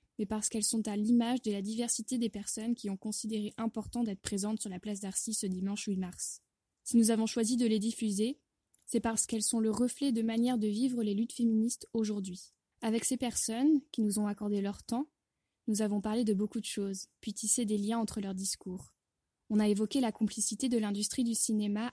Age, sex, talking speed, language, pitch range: 20-39, female, 215 wpm, French, 205-230 Hz